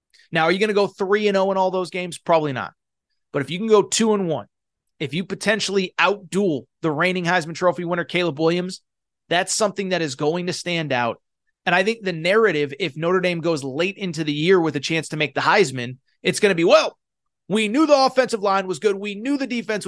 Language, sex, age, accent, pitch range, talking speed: English, male, 30-49, American, 150-195 Hz, 230 wpm